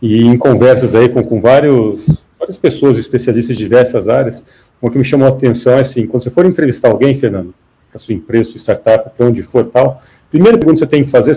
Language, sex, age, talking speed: Portuguese, male, 40-59, 225 wpm